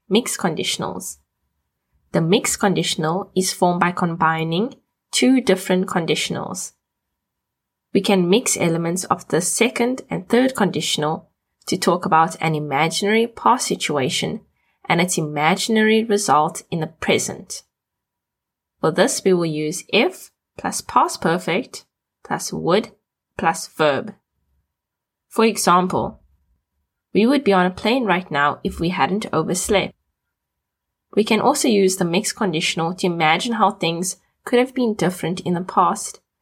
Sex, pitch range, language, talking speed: female, 160-205 Hz, English, 135 wpm